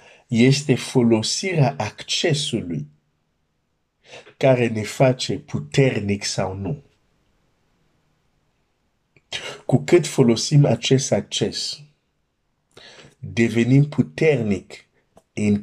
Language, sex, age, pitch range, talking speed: Romanian, male, 50-69, 105-135 Hz, 65 wpm